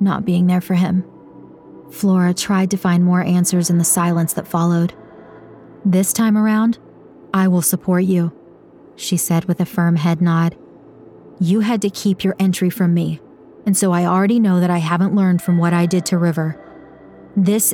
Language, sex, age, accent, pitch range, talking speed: English, female, 30-49, American, 175-195 Hz, 185 wpm